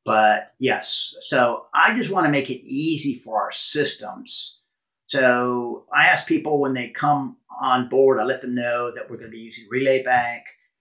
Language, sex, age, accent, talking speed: English, male, 50-69, American, 190 wpm